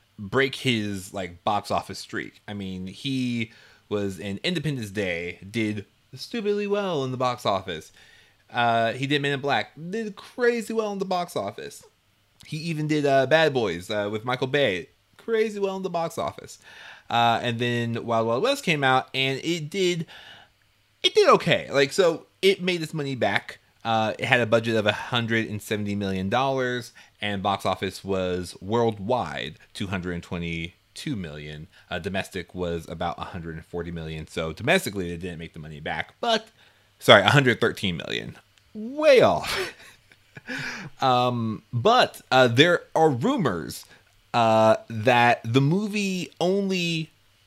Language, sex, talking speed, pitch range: English, male, 150 wpm, 100-145 Hz